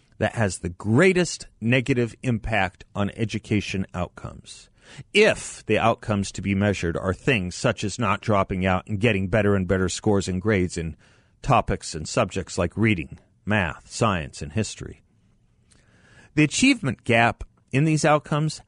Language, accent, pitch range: English, American, 95-120 Hz